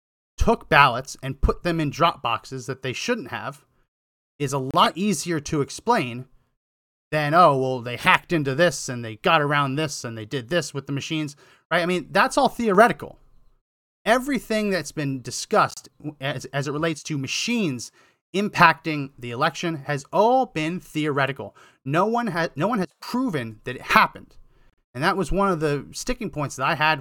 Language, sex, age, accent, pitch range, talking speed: English, male, 30-49, American, 140-205 Hz, 175 wpm